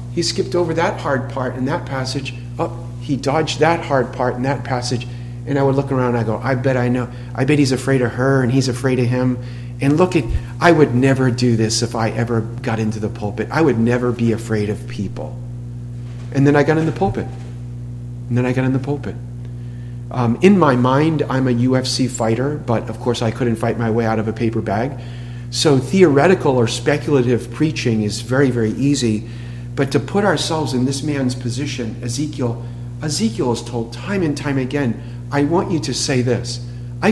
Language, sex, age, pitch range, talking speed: English, male, 40-59, 120-140 Hz, 210 wpm